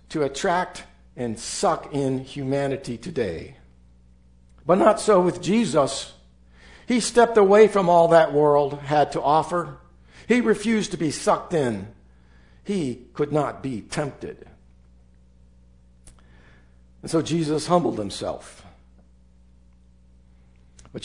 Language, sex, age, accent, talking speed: English, male, 60-79, American, 110 wpm